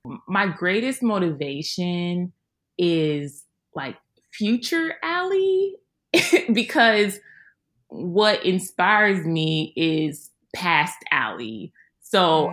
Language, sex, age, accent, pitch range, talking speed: English, female, 20-39, American, 150-200 Hz, 70 wpm